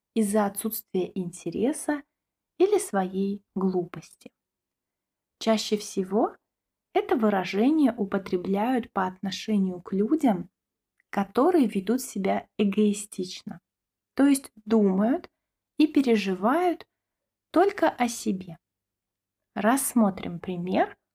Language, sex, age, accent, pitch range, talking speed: Russian, female, 20-39, native, 185-255 Hz, 80 wpm